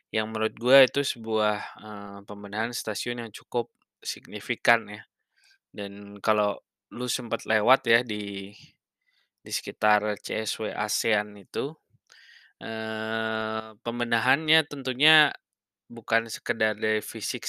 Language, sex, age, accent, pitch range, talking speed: Indonesian, male, 20-39, native, 105-120 Hz, 105 wpm